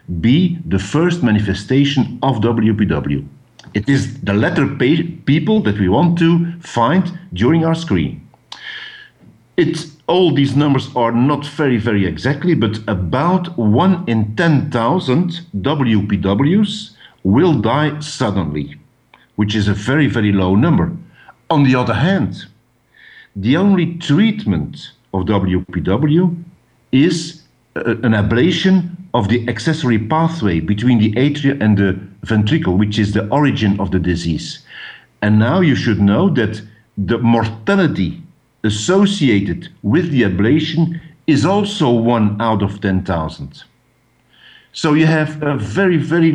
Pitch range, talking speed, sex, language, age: 105-165 Hz, 125 wpm, male, English, 50-69